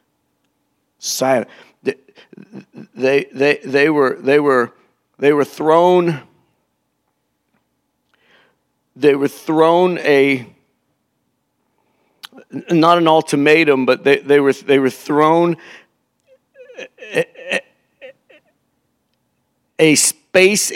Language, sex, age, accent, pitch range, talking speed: English, male, 50-69, American, 135-170 Hz, 80 wpm